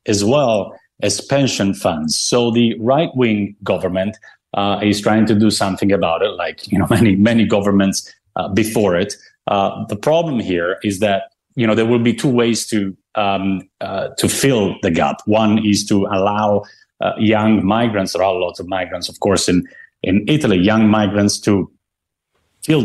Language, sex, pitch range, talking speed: English, male, 95-115 Hz, 180 wpm